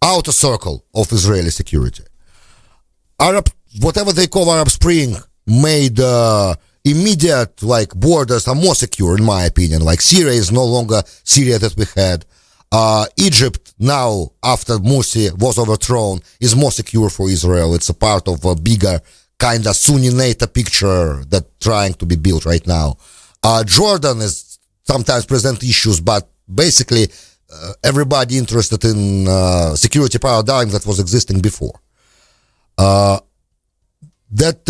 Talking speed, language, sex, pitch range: 140 wpm, English, male, 95-130 Hz